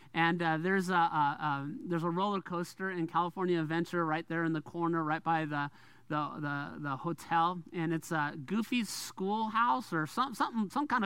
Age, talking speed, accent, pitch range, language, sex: 40-59, 190 wpm, American, 160-210 Hz, English, male